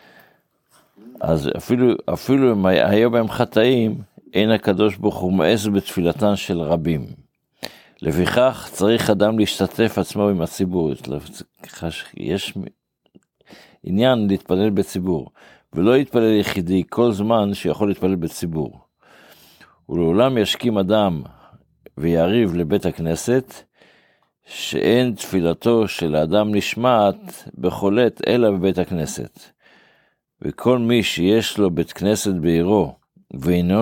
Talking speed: 100 wpm